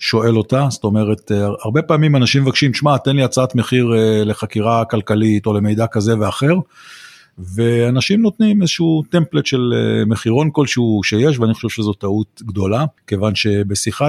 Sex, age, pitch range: male, 50-69, 105-130 Hz